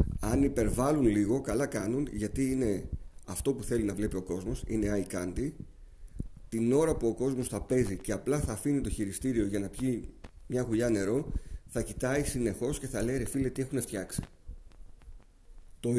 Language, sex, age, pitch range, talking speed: Greek, male, 40-59, 100-130 Hz, 180 wpm